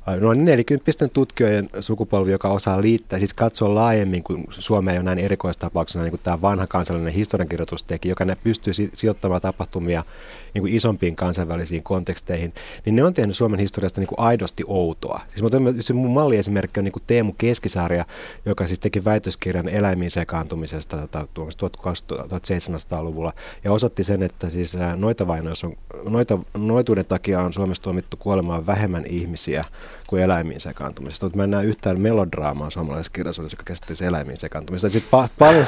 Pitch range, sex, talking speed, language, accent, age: 90-110 Hz, male, 150 wpm, Finnish, native, 30-49